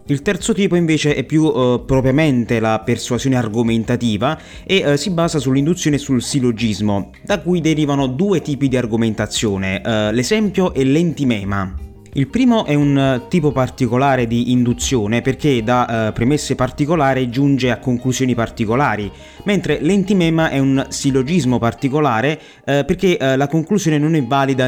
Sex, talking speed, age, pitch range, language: male, 145 wpm, 30-49, 120-150 Hz, Italian